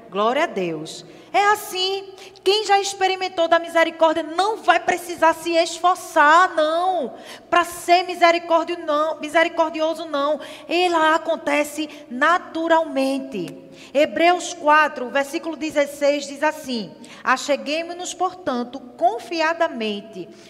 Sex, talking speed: female, 95 wpm